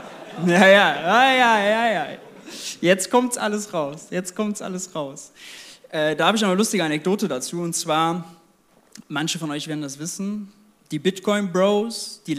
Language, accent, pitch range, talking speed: German, German, 170-215 Hz, 160 wpm